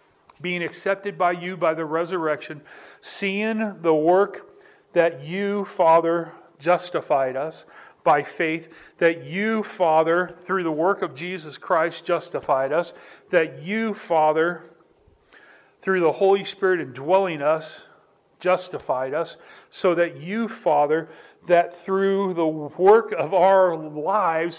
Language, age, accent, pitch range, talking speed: English, 40-59, American, 155-195 Hz, 120 wpm